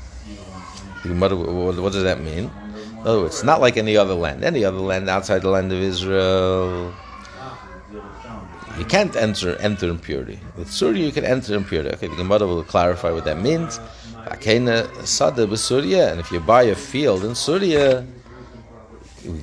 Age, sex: 60-79, male